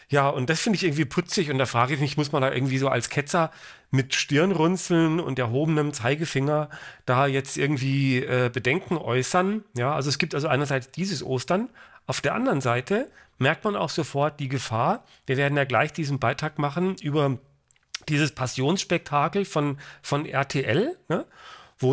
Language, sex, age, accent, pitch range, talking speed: English, male, 40-59, German, 130-180 Hz, 170 wpm